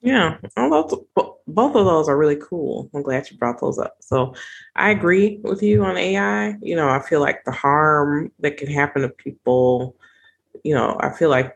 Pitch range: 130-150 Hz